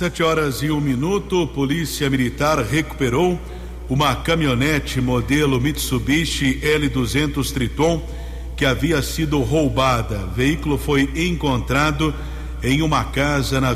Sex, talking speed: male, 115 wpm